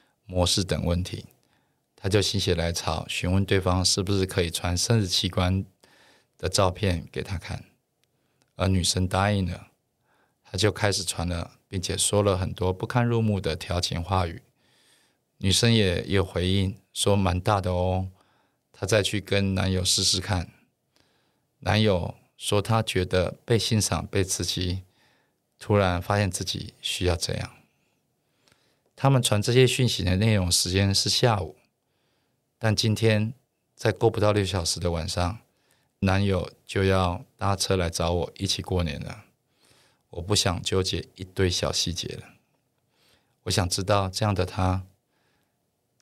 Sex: male